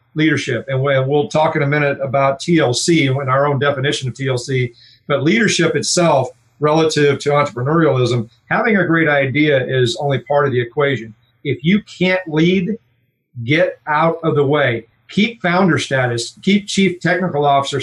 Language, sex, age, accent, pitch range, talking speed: English, male, 40-59, American, 130-165 Hz, 160 wpm